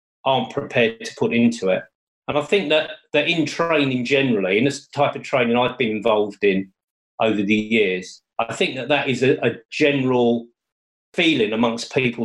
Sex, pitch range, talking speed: male, 115-145 Hz, 180 wpm